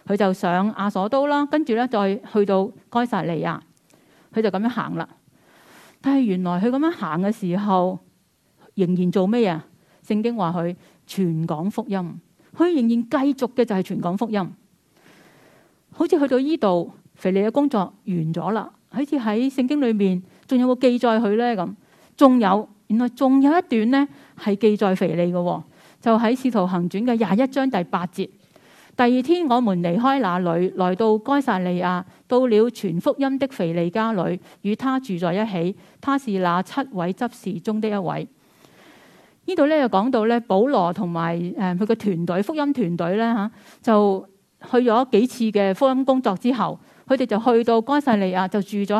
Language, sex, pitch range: Chinese, female, 185-250 Hz